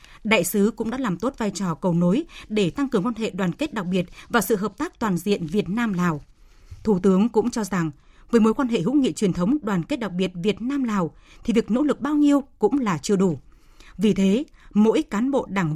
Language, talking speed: Vietnamese, 235 wpm